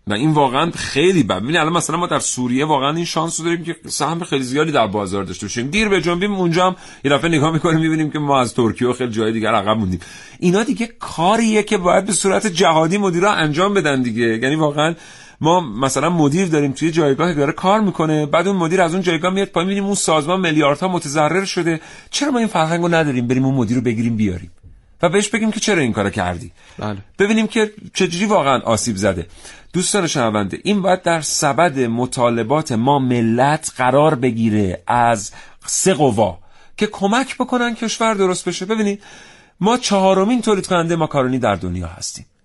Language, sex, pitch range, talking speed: Persian, male, 120-185 Hz, 190 wpm